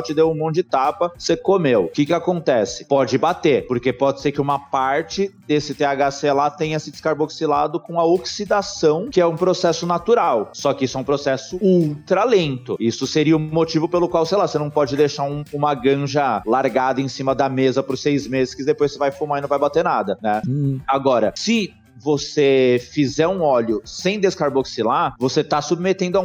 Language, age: Portuguese, 30-49